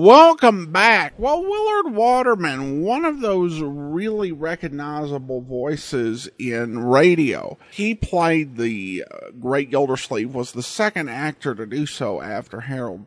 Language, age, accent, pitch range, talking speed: English, 50-69, American, 125-210 Hz, 130 wpm